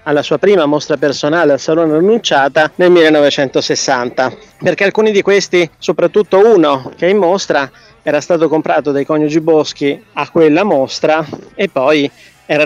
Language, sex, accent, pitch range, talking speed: Italian, male, native, 145-175 Hz, 150 wpm